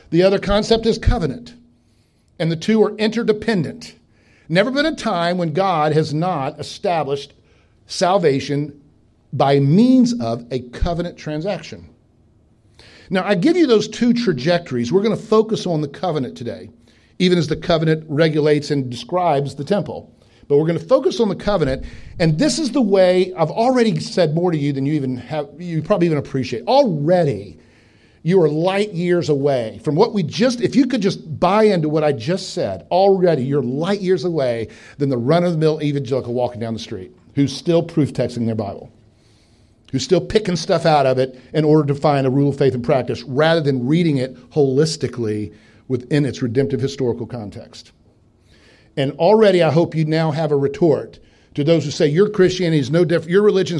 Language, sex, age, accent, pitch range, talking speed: English, male, 50-69, American, 130-185 Hz, 185 wpm